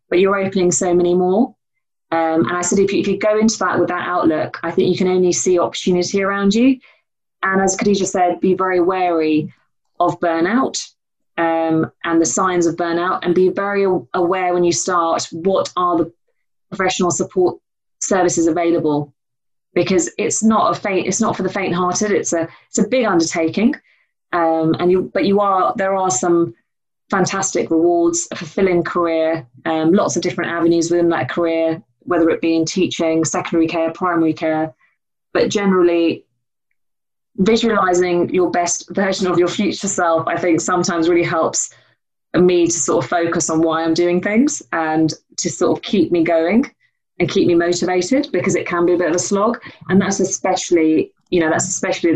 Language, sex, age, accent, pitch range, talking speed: English, female, 30-49, British, 165-190 Hz, 180 wpm